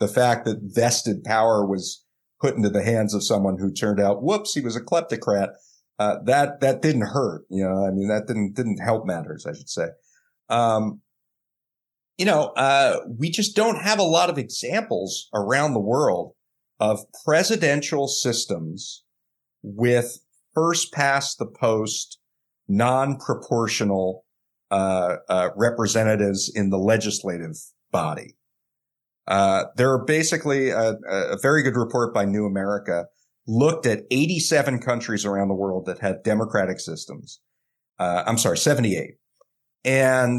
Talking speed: 145 wpm